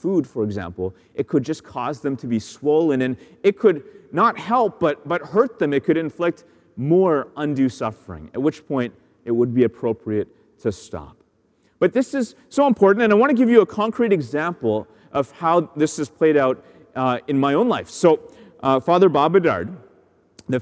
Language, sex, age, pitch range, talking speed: English, male, 30-49, 130-195 Hz, 190 wpm